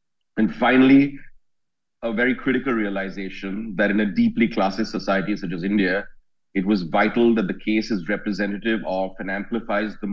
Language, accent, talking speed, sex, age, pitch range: English, Indian, 160 wpm, male, 40-59, 95-115 Hz